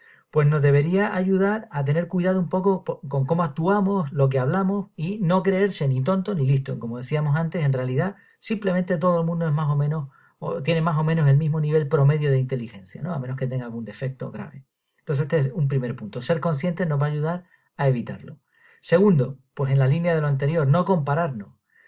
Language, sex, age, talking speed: Spanish, male, 40-59, 215 wpm